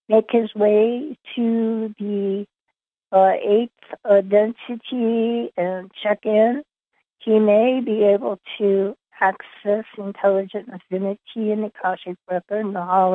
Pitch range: 190-220 Hz